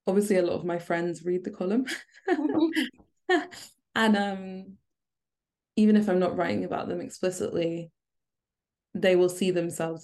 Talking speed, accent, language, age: 135 wpm, British, English, 20-39